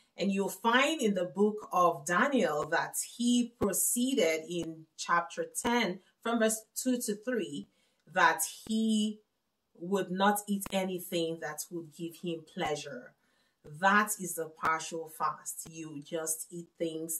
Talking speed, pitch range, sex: 135 wpm, 165-220 Hz, female